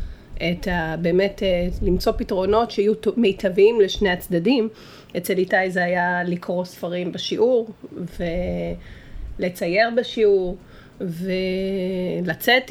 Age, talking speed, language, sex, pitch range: 30-49, 90 wpm, Hebrew, female, 180-215 Hz